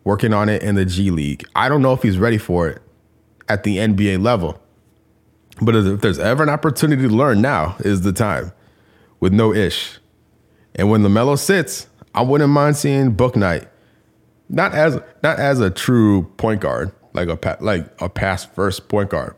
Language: English